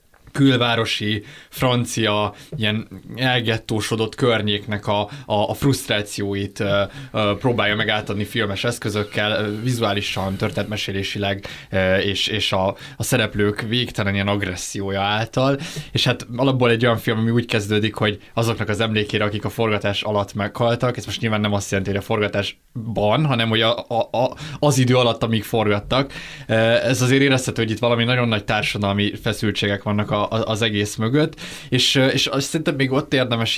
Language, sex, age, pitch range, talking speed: Hungarian, male, 20-39, 105-125 Hz, 150 wpm